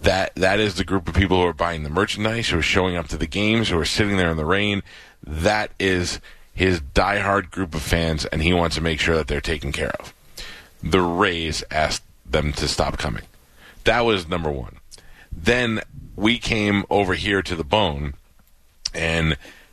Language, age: English, 30-49